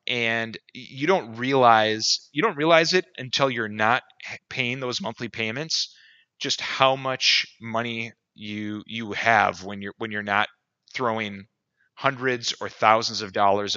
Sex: male